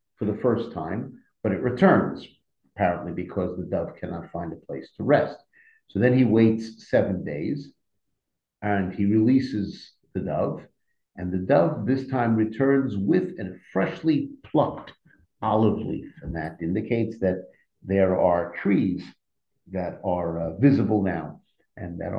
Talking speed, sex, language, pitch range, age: 145 wpm, male, English, 95-115 Hz, 50-69